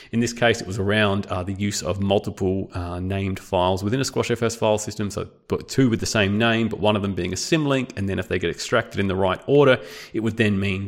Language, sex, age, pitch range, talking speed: English, male, 30-49, 95-125 Hz, 255 wpm